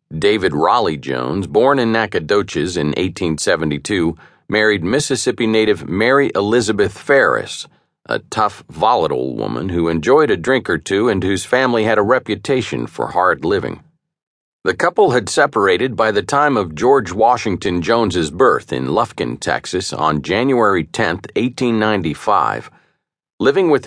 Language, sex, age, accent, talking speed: English, male, 50-69, American, 135 wpm